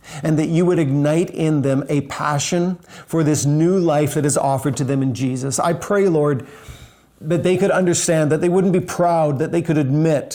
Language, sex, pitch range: English, male, 135-155 Hz